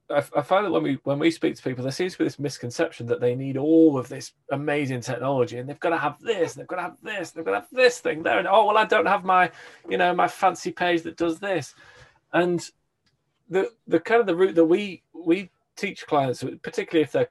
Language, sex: English, male